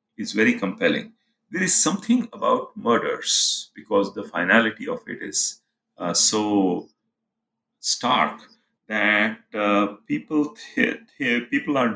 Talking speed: 110 wpm